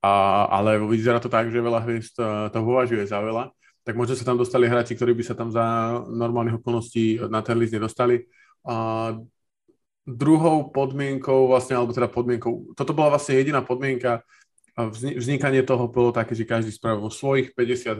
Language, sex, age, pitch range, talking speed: Slovak, male, 20-39, 110-125 Hz, 165 wpm